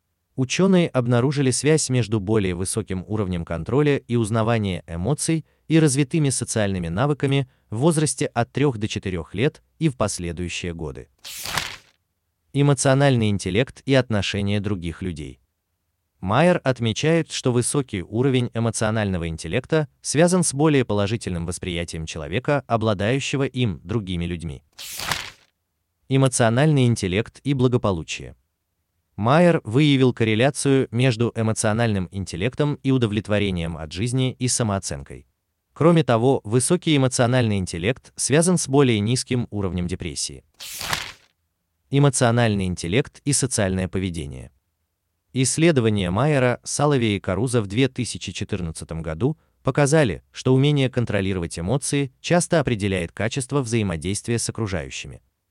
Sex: male